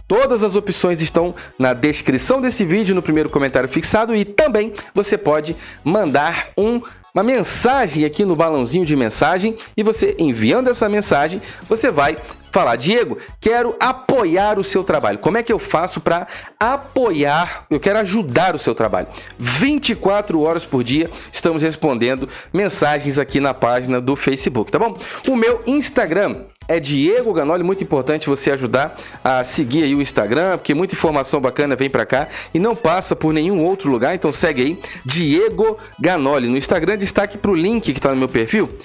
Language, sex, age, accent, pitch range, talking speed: Portuguese, male, 40-59, Brazilian, 150-210 Hz, 170 wpm